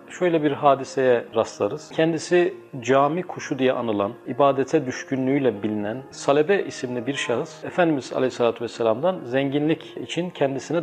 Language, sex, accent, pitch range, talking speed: Turkish, male, native, 125-165 Hz, 120 wpm